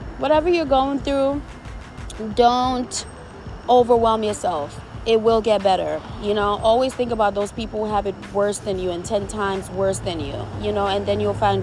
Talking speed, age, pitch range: 185 wpm, 20-39, 175-225 Hz